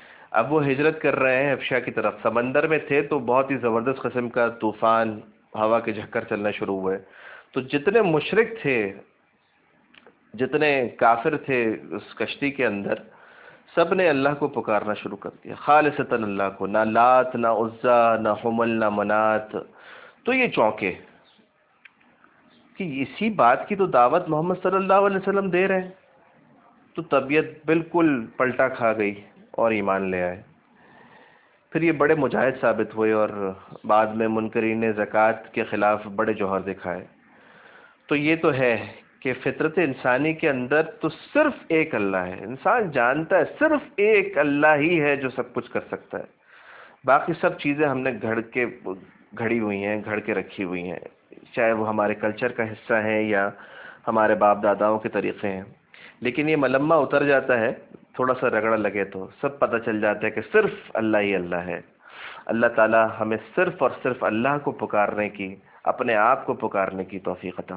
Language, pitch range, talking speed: Urdu, 105-150 Hz, 170 wpm